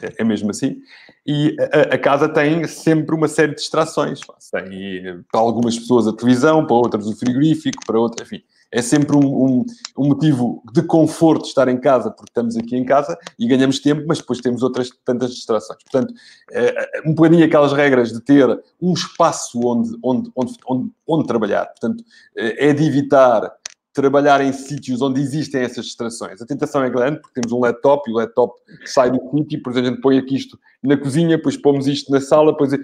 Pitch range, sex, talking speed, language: 125-150 Hz, male, 190 wpm, Portuguese